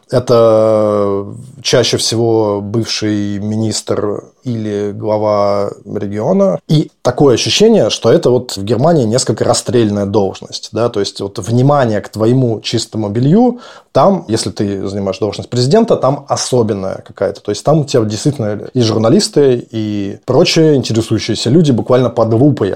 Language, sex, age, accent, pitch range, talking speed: Russian, male, 20-39, native, 105-130 Hz, 135 wpm